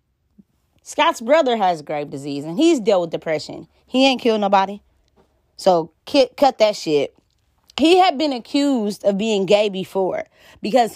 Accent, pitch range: American, 180-265 Hz